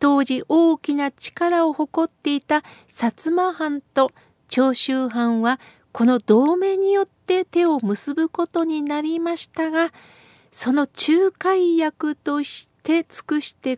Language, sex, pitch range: Japanese, female, 245-320 Hz